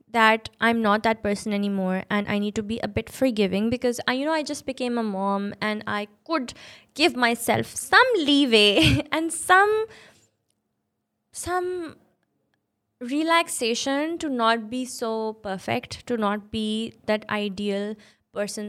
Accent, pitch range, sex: Indian, 200-250 Hz, female